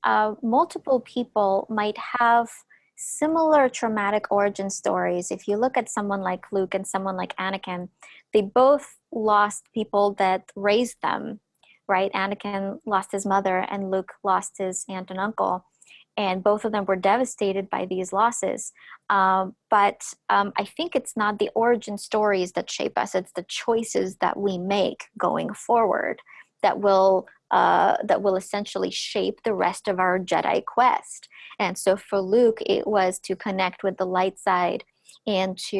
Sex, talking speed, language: female, 160 wpm, English